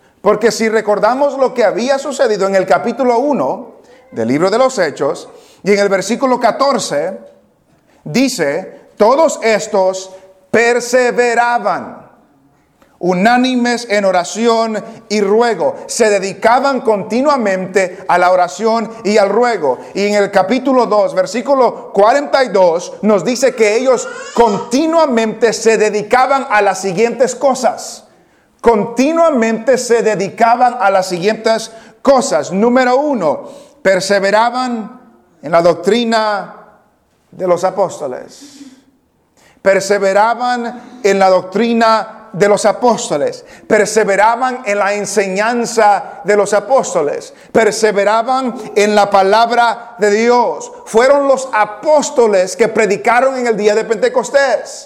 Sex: male